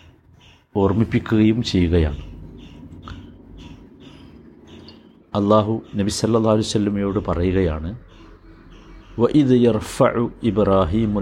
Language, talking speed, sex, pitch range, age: Malayalam, 80 wpm, male, 90-115 Hz, 60-79